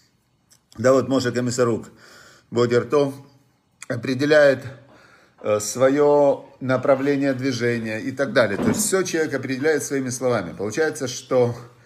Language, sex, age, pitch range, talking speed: Russian, male, 50-69, 120-140 Hz, 110 wpm